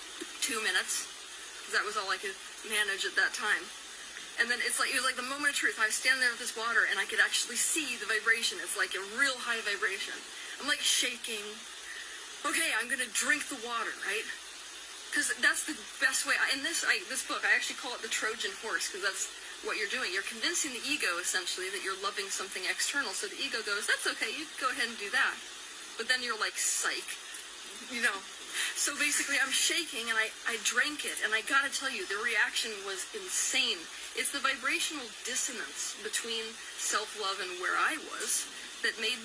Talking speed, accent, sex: 205 wpm, American, female